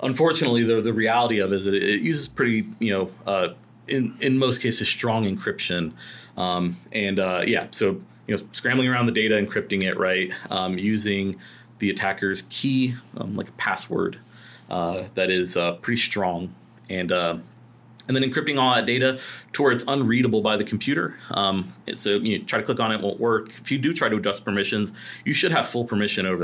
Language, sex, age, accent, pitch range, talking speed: English, male, 30-49, American, 95-120 Hz, 205 wpm